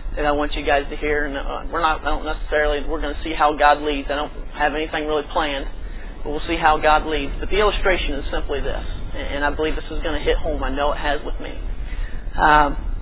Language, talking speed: English, 250 wpm